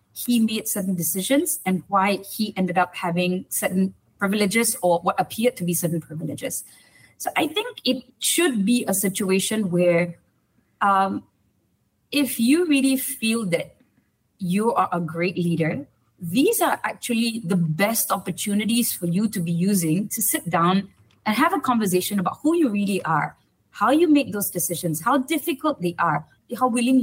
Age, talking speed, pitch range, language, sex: 30-49, 160 wpm, 185-245 Hz, English, female